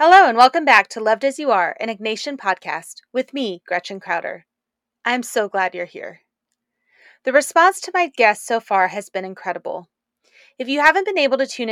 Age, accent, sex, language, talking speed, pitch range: 30-49, American, female, English, 195 wpm, 195-250 Hz